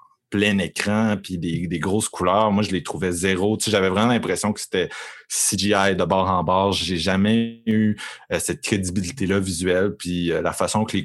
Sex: male